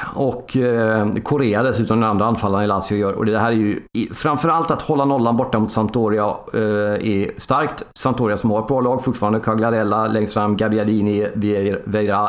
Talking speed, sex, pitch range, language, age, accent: 170 wpm, male, 105-125 Hz, Swedish, 40-59, native